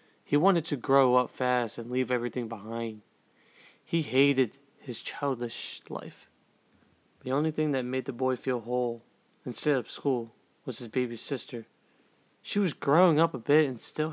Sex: male